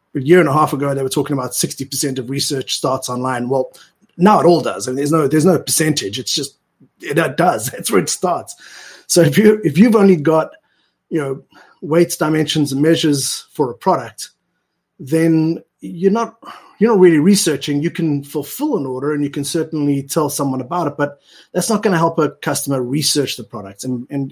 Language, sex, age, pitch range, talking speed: English, male, 30-49, 130-165 Hz, 210 wpm